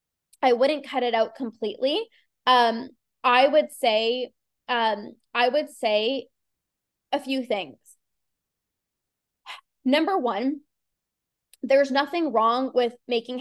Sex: female